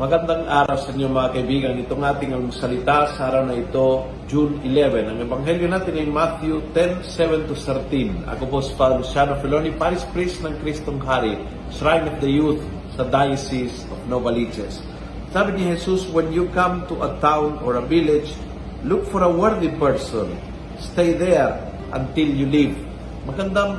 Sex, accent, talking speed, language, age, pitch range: male, native, 170 wpm, Filipino, 50-69, 135-170 Hz